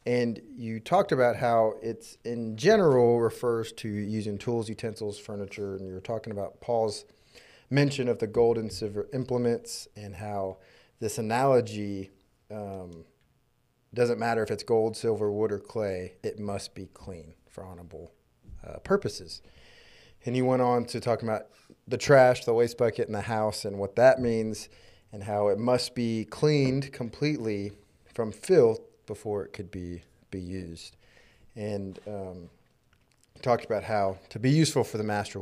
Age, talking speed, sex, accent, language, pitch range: 30-49, 160 wpm, male, American, English, 100-120 Hz